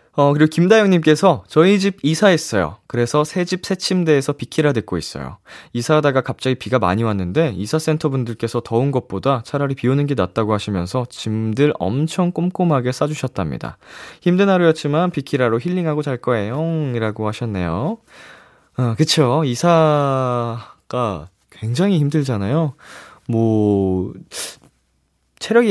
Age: 20-39